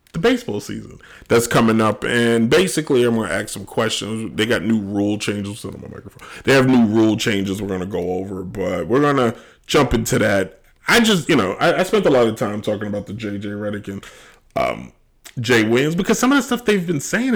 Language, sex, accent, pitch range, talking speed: English, male, American, 105-155 Hz, 205 wpm